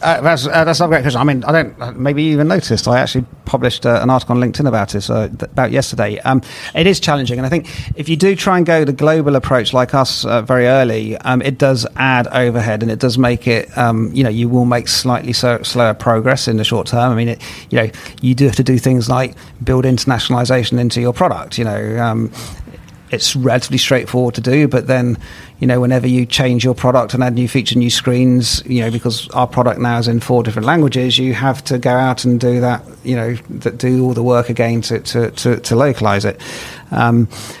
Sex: male